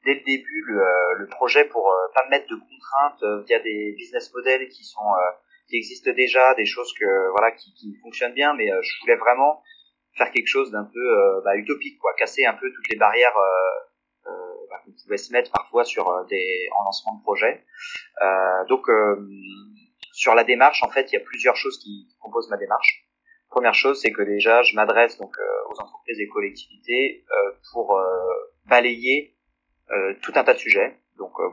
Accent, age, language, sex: French, 30-49, French, male